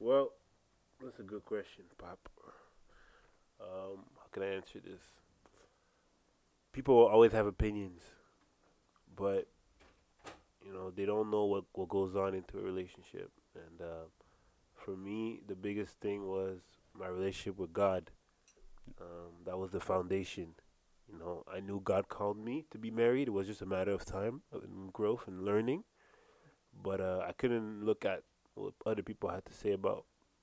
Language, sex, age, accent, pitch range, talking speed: English, male, 20-39, American, 95-110 Hz, 155 wpm